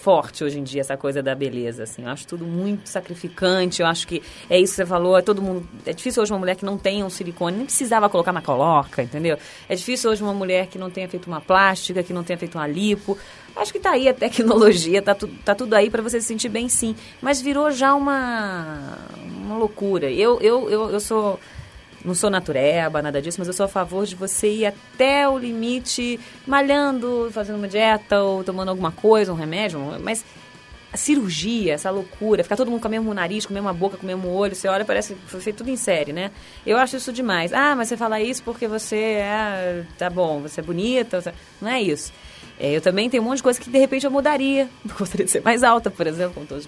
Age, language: 20-39, Portuguese